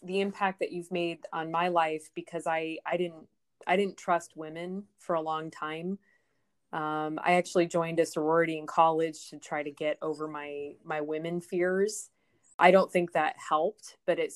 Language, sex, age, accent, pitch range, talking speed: English, female, 20-39, American, 155-175 Hz, 185 wpm